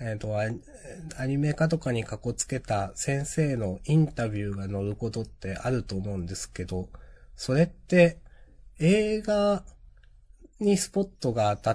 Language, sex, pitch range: Japanese, male, 95-160 Hz